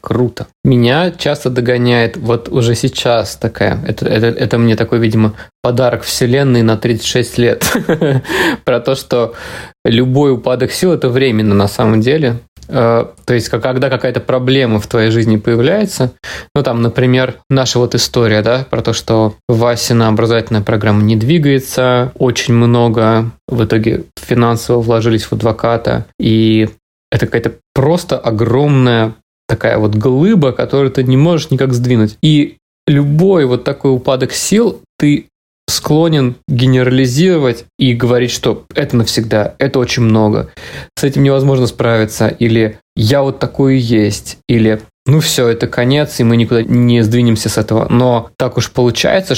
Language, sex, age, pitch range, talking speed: Russian, male, 20-39, 115-130 Hz, 145 wpm